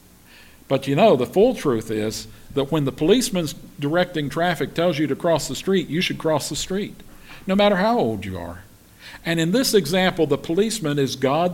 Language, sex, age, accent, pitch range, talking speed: English, male, 50-69, American, 110-180 Hz, 200 wpm